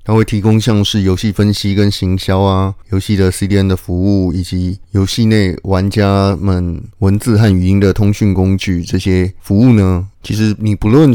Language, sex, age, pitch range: Chinese, male, 20-39, 90-105 Hz